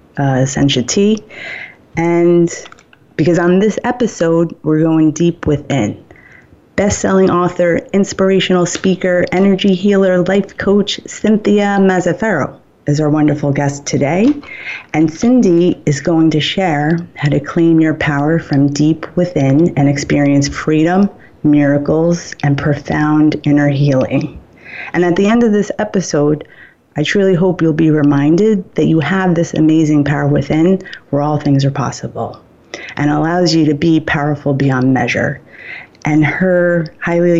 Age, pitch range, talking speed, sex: 30-49, 145-180 Hz, 135 wpm, female